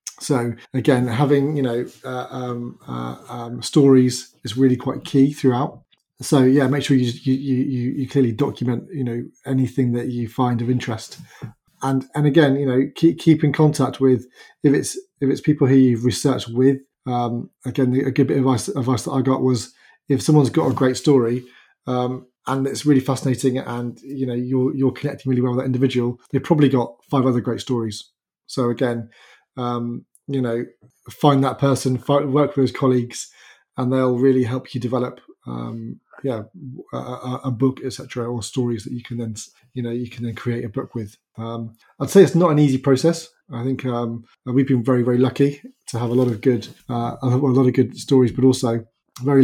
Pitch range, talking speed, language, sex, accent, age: 120-135 Hz, 200 wpm, English, male, British, 30-49